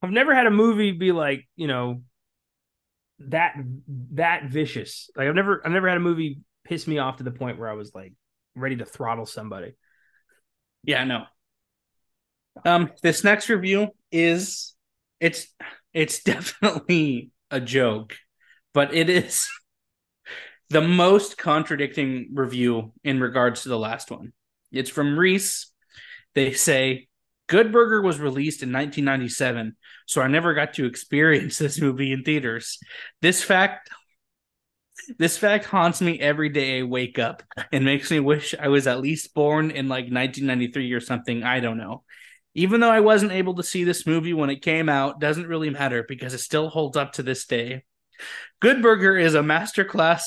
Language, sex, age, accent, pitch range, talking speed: English, male, 20-39, American, 130-175 Hz, 165 wpm